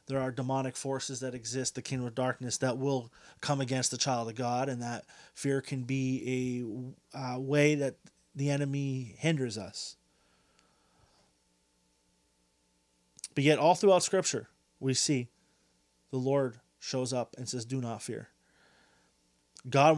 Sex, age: male, 30-49